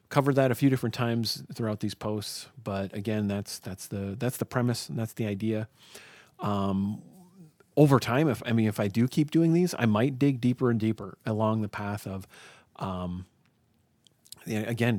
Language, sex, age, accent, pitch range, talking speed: English, male, 40-59, American, 105-130 Hz, 180 wpm